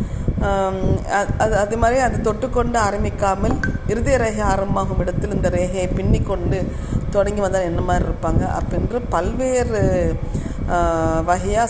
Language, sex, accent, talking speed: Tamil, female, native, 110 wpm